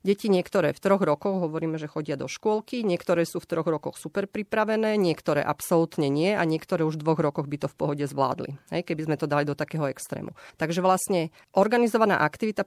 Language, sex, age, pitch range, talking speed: Slovak, female, 40-59, 150-185 Hz, 200 wpm